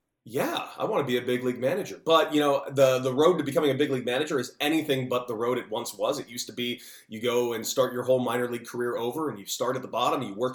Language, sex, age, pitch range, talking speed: English, male, 30-49, 110-135 Hz, 295 wpm